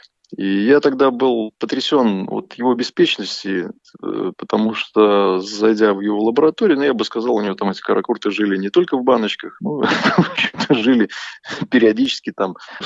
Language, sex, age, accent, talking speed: Russian, male, 20-39, native, 165 wpm